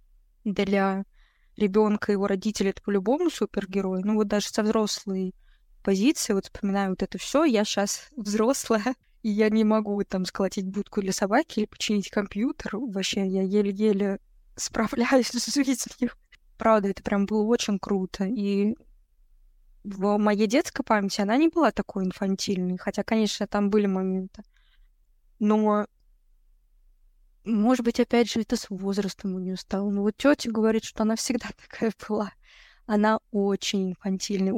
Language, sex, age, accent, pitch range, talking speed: Russian, female, 20-39, native, 195-220 Hz, 145 wpm